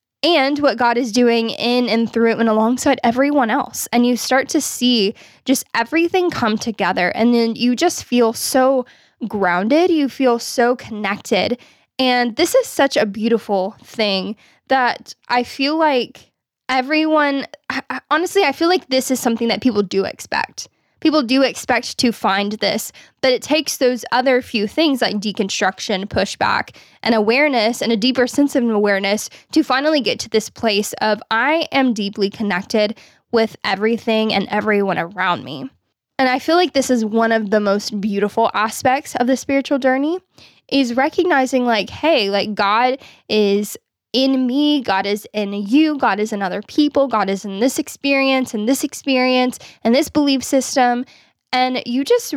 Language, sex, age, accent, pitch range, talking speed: English, female, 10-29, American, 215-270 Hz, 165 wpm